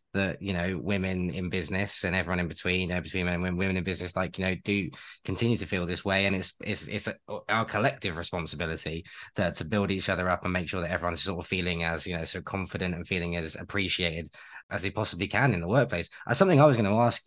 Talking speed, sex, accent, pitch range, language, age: 255 wpm, male, British, 90-100 Hz, English, 20-39